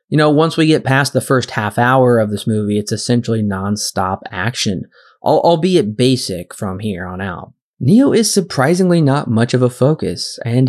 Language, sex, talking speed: English, male, 180 wpm